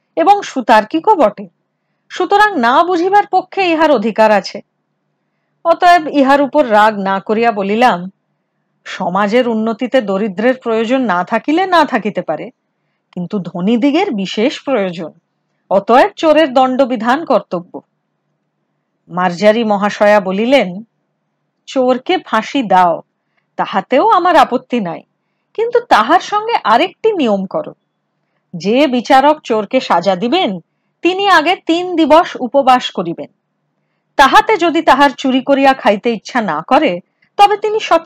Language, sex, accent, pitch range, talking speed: Hindi, female, native, 200-320 Hz, 45 wpm